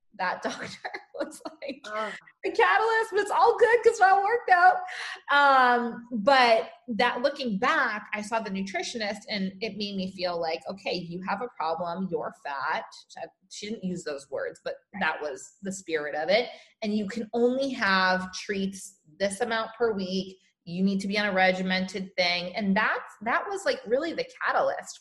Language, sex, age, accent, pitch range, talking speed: English, female, 20-39, American, 185-250 Hz, 180 wpm